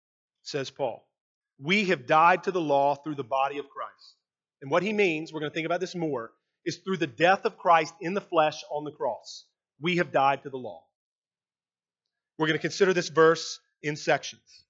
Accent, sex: American, male